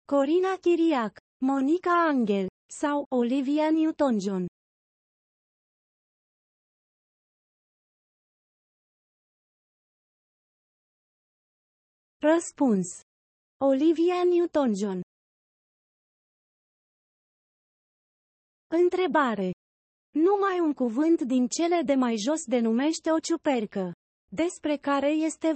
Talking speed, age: 60 wpm, 30-49